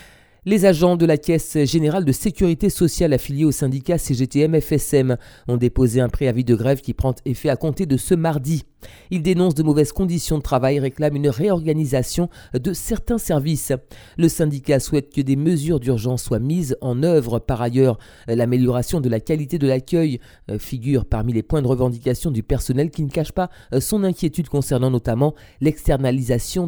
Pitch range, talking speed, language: 130-165 Hz, 175 wpm, French